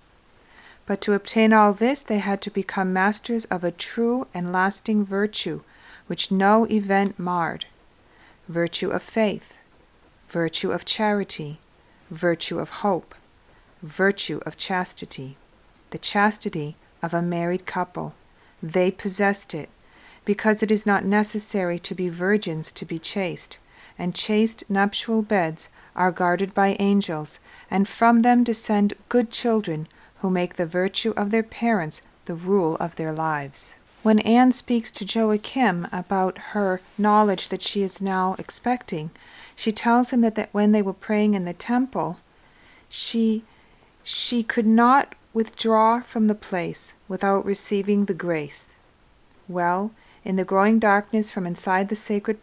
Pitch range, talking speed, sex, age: 180-215 Hz, 140 wpm, female, 40-59